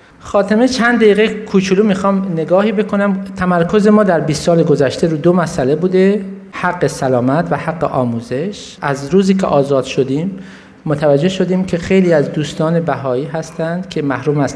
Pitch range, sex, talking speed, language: 135-175 Hz, male, 155 wpm, Persian